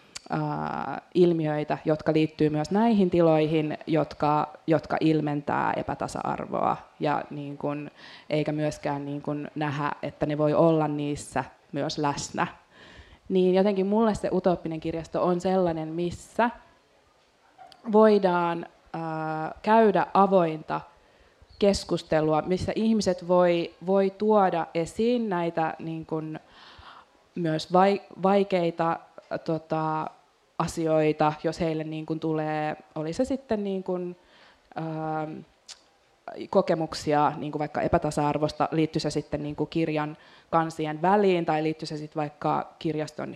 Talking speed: 110 wpm